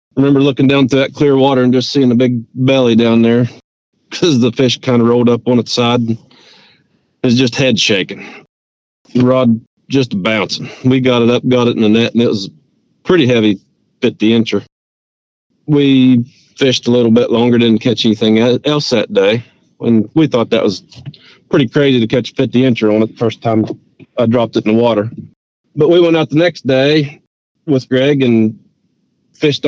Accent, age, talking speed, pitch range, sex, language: American, 40-59, 200 wpm, 115-135 Hz, male, English